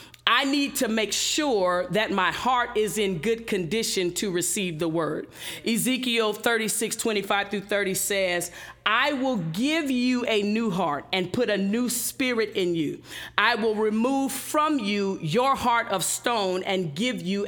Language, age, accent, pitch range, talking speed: English, 40-59, American, 185-230 Hz, 165 wpm